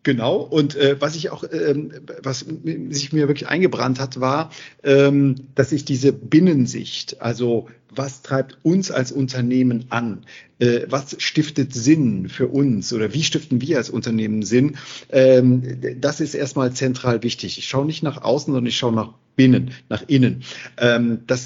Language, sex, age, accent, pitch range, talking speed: German, male, 40-59, German, 120-145 Hz, 155 wpm